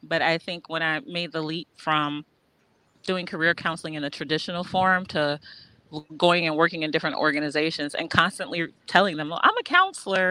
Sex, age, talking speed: female, 30-49, 180 wpm